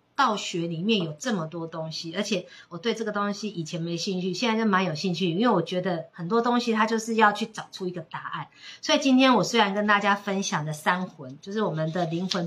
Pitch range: 170-225 Hz